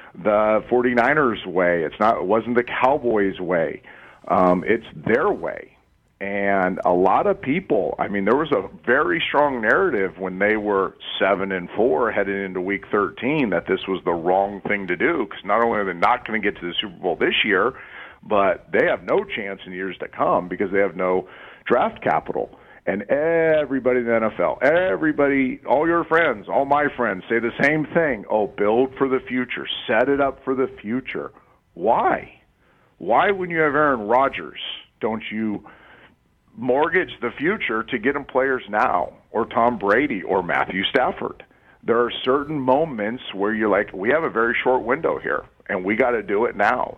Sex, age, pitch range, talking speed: male, 50-69, 100-140 Hz, 185 wpm